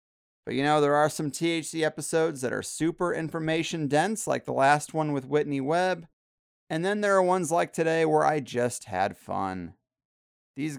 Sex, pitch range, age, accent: male, 120-165 Hz, 30-49, American